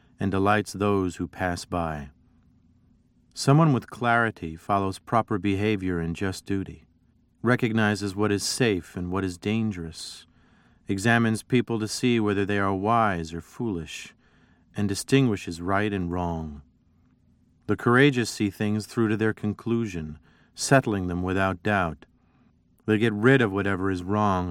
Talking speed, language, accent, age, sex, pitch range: 140 wpm, English, American, 40-59, male, 85-110 Hz